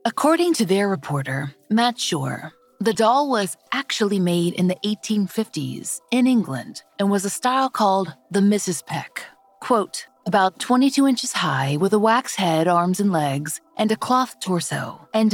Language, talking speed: English, 160 wpm